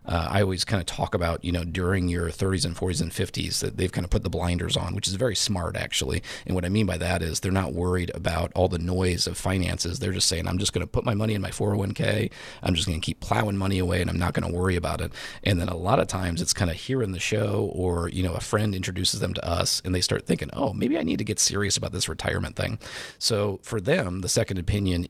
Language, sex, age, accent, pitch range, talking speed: English, male, 30-49, American, 90-100 Hz, 280 wpm